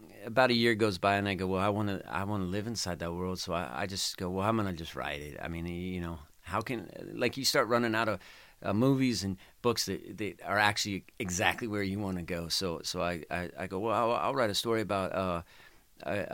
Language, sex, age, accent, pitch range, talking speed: English, male, 40-59, American, 90-105 Hz, 260 wpm